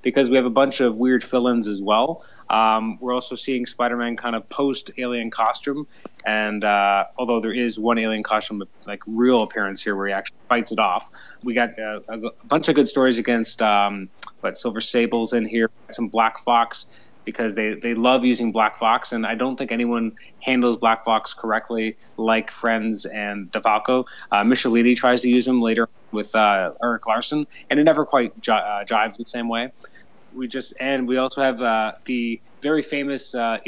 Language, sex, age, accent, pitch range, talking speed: English, male, 20-39, American, 115-130 Hz, 190 wpm